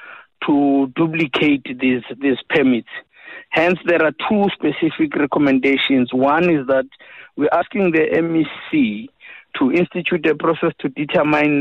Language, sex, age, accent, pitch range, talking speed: English, male, 50-69, South African, 135-165 Hz, 120 wpm